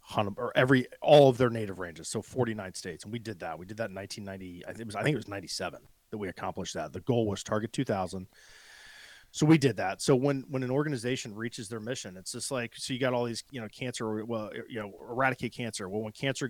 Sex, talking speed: male, 260 wpm